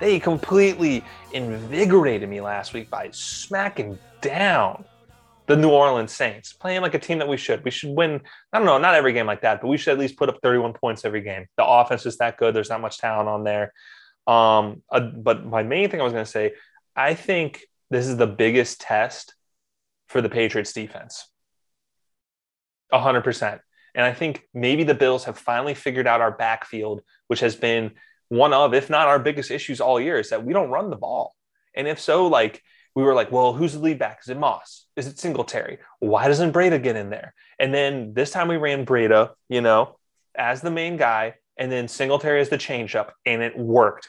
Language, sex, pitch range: English, male, 115-150 Hz